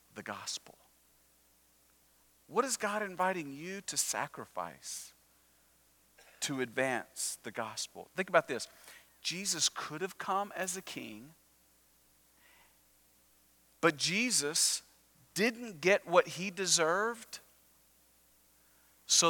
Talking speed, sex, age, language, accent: 95 wpm, male, 40-59, English, American